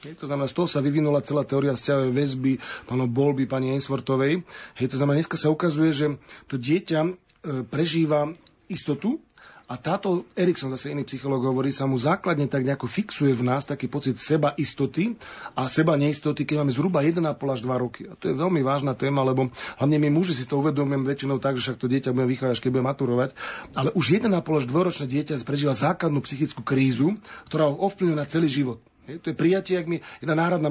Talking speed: 195 wpm